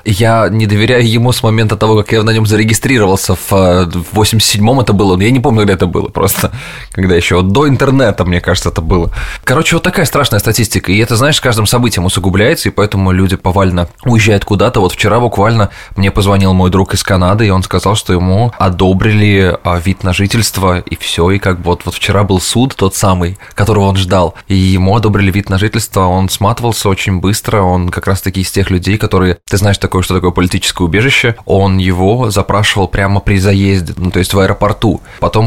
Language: Russian